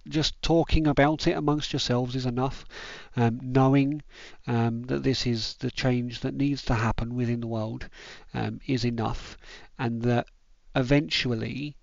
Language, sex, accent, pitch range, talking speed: English, male, British, 115-135 Hz, 145 wpm